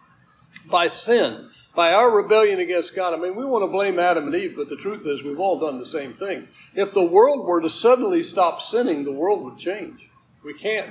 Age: 60-79